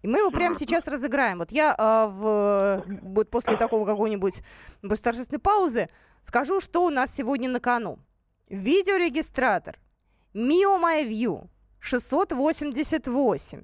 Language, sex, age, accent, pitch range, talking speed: Russian, female, 20-39, native, 215-290 Hz, 105 wpm